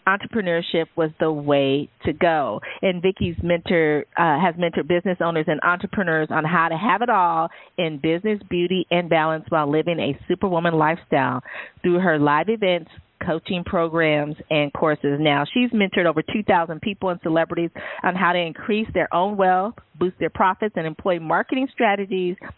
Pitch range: 160-195 Hz